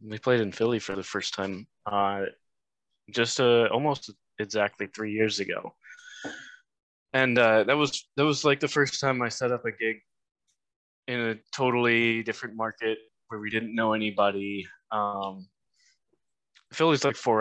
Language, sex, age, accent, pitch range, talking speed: English, male, 20-39, American, 105-120 Hz, 155 wpm